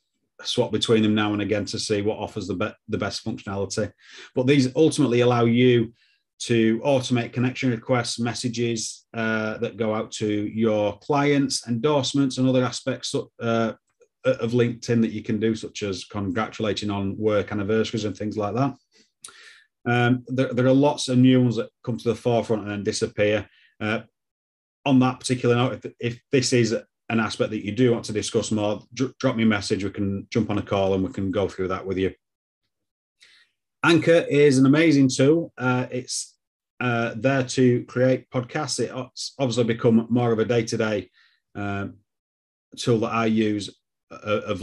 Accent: British